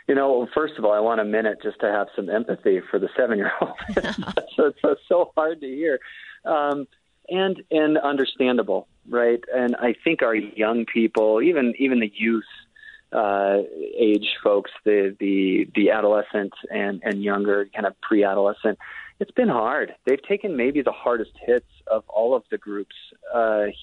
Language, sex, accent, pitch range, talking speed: English, male, American, 105-140 Hz, 175 wpm